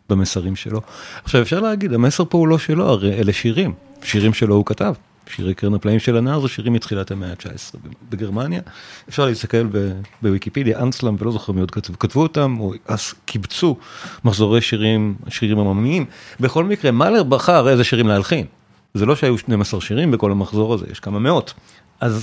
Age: 40-59